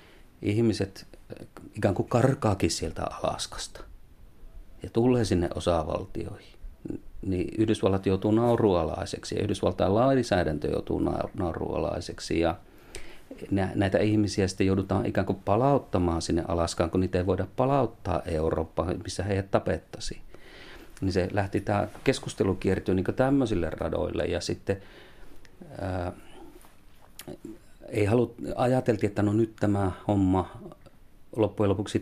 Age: 40-59